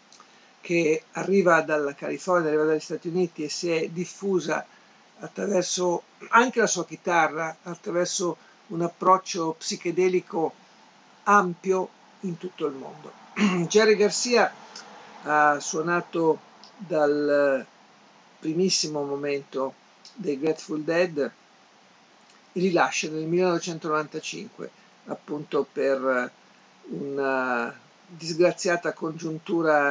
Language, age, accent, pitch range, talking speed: Italian, 50-69, native, 150-180 Hz, 90 wpm